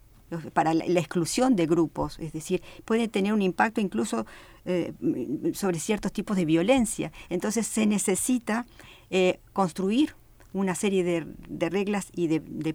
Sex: female